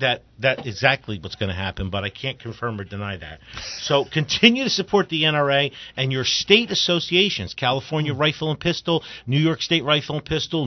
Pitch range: 130-160 Hz